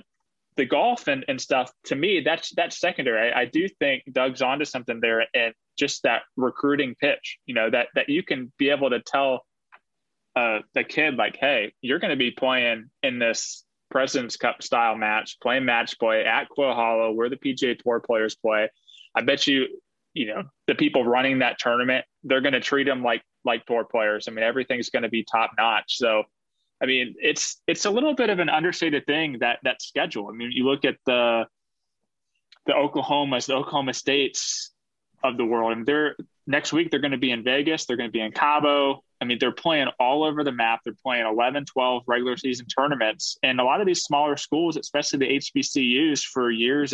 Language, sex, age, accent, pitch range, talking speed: English, male, 20-39, American, 120-150 Hz, 205 wpm